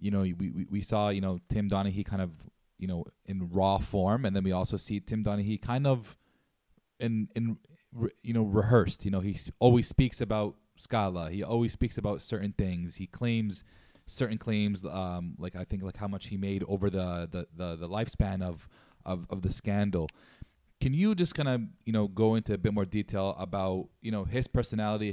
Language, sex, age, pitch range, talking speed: English, male, 20-39, 95-110 Hz, 205 wpm